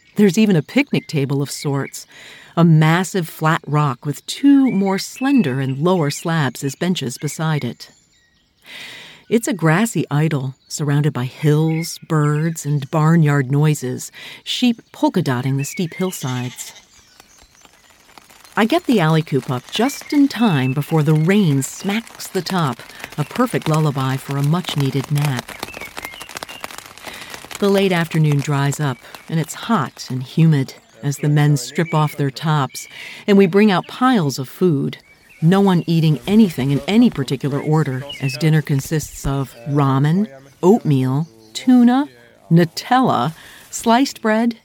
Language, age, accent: English, 50-69, American